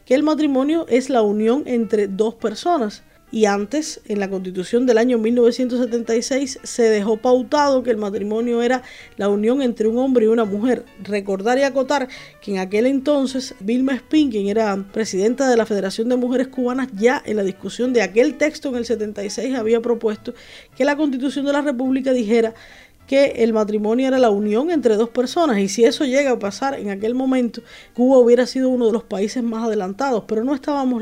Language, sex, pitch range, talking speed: Spanish, female, 215-260 Hz, 190 wpm